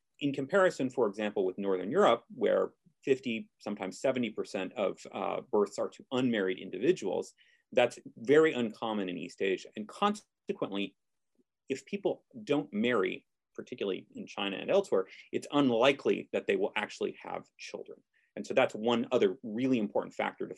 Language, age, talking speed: English, 30-49, 150 wpm